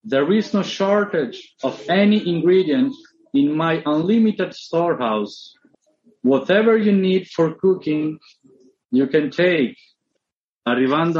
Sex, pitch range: male, 130-190 Hz